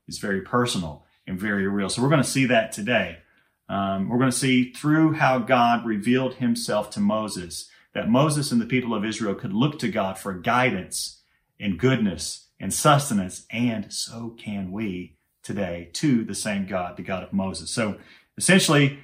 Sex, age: male, 40-59